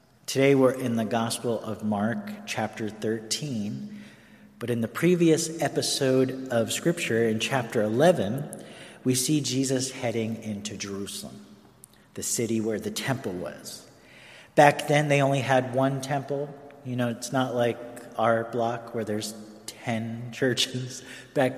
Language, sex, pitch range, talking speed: English, male, 110-150 Hz, 140 wpm